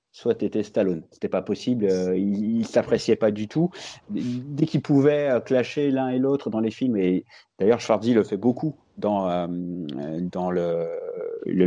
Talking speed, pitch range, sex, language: 190 wpm, 110-160 Hz, male, French